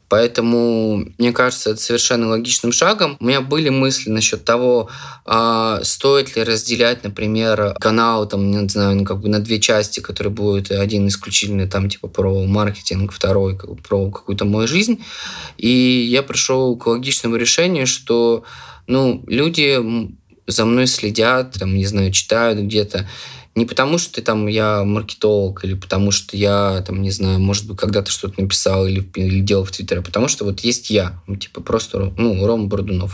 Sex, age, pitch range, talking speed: male, 20-39, 100-115 Hz, 170 wpm